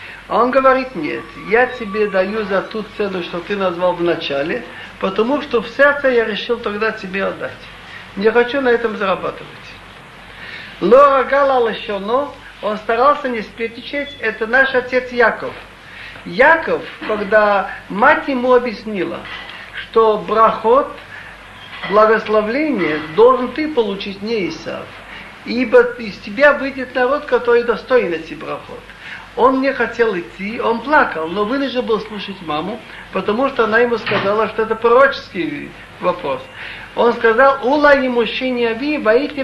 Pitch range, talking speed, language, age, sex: 215-265 Hz, 135 wpm, Russian, 50-69, male